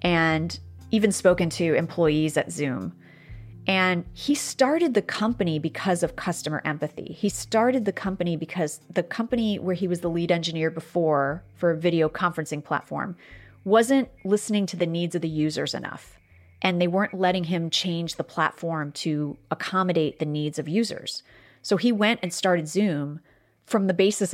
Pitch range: 160-190 Hz